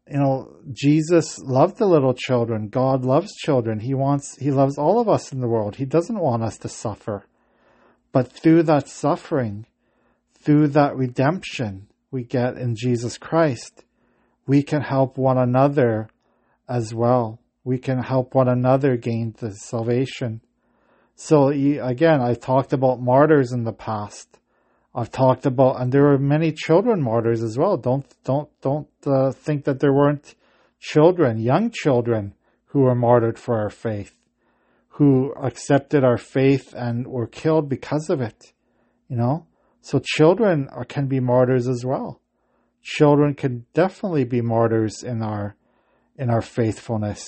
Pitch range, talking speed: 120-145 Hz, 150 wpm